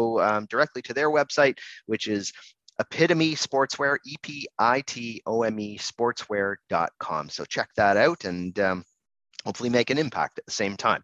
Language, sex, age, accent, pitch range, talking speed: English, male, 30-49, American, 110-135 Hz, 135 wpm